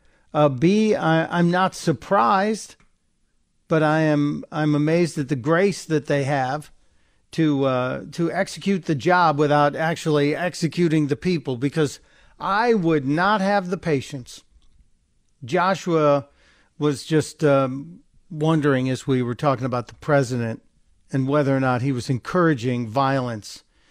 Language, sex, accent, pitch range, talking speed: English, male, American, 130-165 Hz, 140 wpm